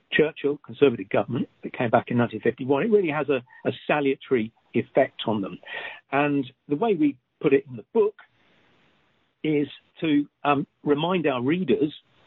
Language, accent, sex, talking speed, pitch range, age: English, British, male, 155 wpm, 125-175 Hz, 50-69